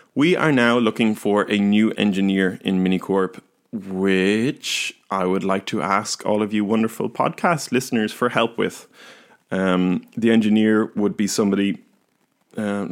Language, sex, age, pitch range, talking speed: English, male, 20-39, 95-120 Hz, 150 wpm